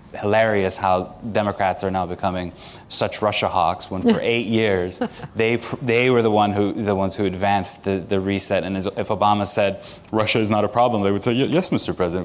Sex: male